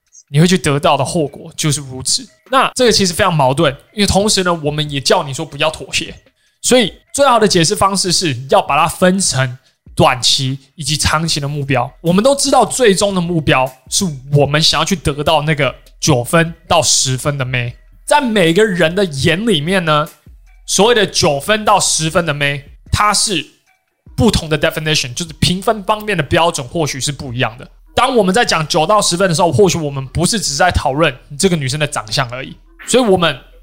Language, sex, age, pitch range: Chinese, male, 20-39, 145-195 Hz